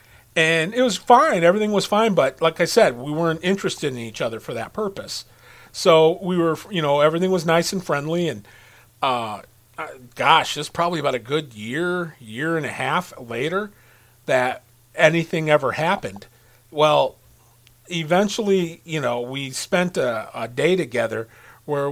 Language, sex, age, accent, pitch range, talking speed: English, male, 40-59, American, 120-170 Hz, 160 wpm